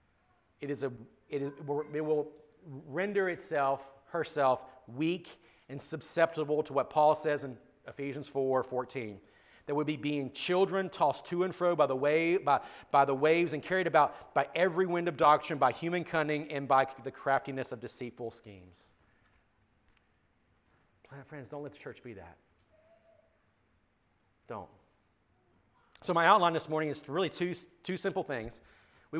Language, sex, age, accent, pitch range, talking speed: English, male, 40-59, American, 145-175 Hz, 155 wpm